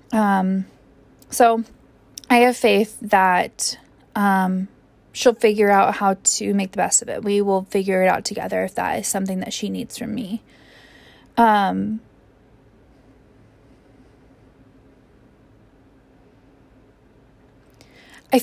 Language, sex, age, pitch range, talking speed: English, female, 20-39, 185-225 Hz, 110 wpm